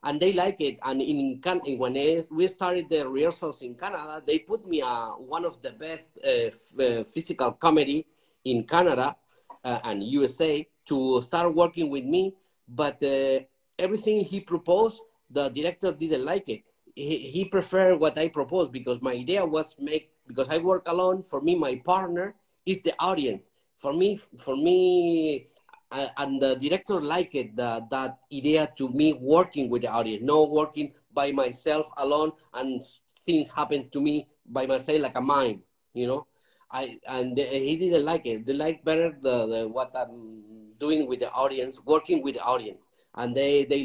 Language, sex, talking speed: Italian, male, 175 wpm